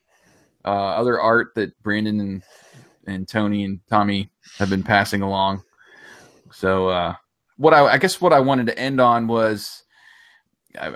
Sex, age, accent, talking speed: male, 30-49, American, 155 wpm